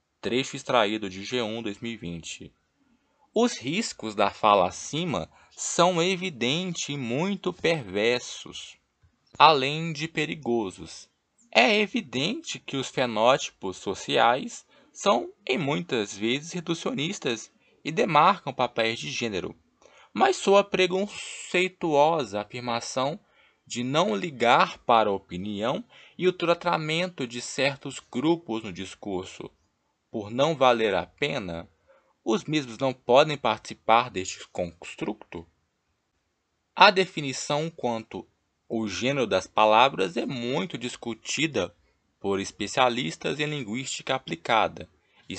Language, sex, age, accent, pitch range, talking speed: Portuguese, male, 20-39, Brazilian, 105-155 Hz, 105 wpm